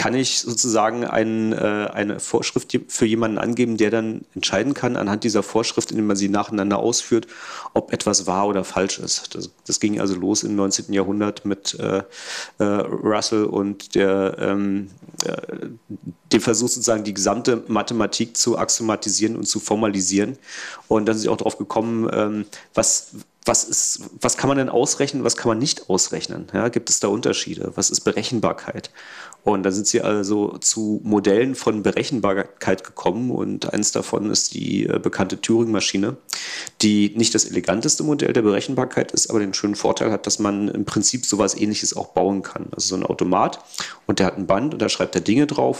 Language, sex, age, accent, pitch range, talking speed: German, male, 40-59, German, 100-115 Hz, 175 wpm